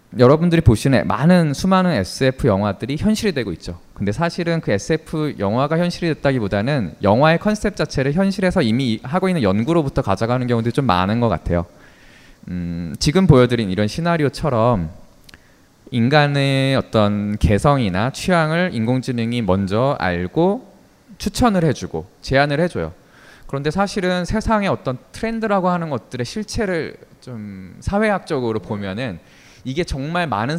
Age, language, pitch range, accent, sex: 20-39, Korean, 110-175 Hz, native, male